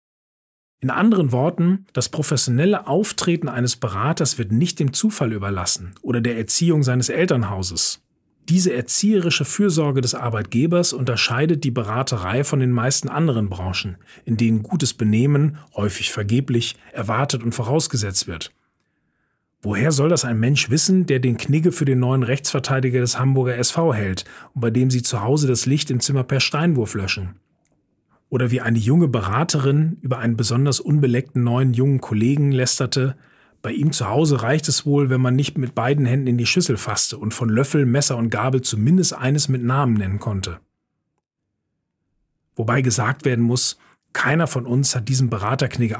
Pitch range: 115-145 Hz